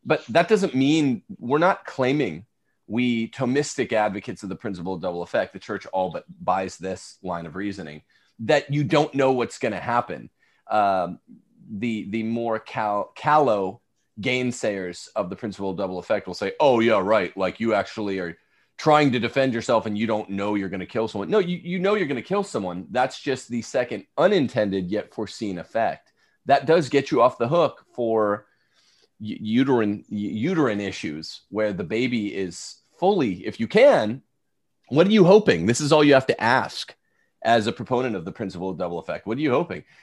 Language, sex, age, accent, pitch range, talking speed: English, male, 30-49, American, 100-135 Hz, 190 wpm